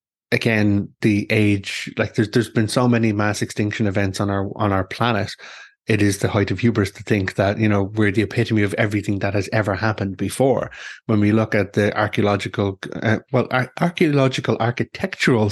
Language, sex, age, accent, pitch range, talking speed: English, male, 20-39, Irish, 100-115 Hz, 185 wpm